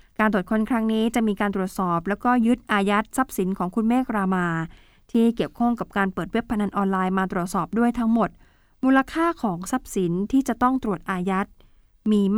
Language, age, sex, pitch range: Thai, 20-39, female, 190-230 Hz